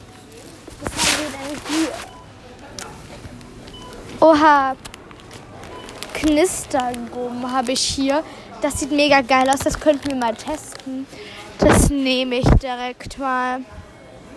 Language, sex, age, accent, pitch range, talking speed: German, female, 20-39, German, 255-305 Hz, 90 wpm